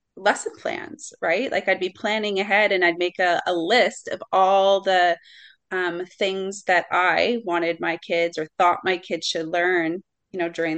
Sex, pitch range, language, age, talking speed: female, 175-215 Hz, English, 30-49, 185 wpm